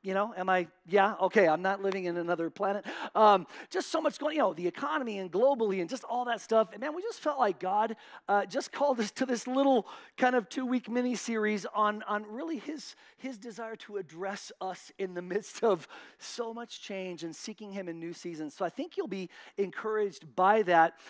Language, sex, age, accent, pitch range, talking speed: English, male, 40-59, American, 190-255 Hz, 215 wpm